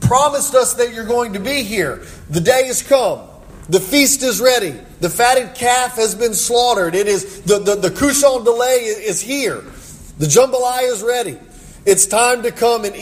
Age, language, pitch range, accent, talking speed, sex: 40-59, English, 215-285 Hz, American, 185 wpm, male